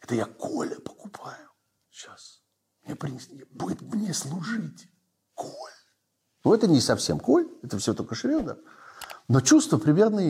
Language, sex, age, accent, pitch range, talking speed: Russian, male, 50-69, native, 110-185 Hz, 135 wpm